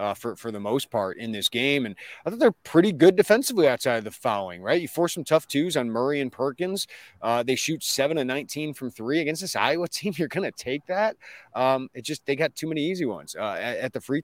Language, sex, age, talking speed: English, male, 30-49, 255 wpm